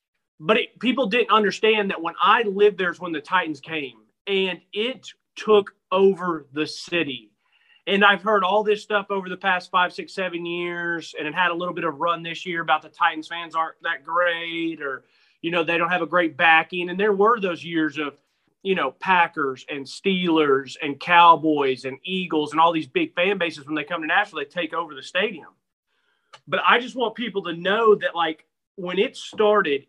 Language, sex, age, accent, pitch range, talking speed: English, male, 30-49, American, 155-195 Hz, 205 wpm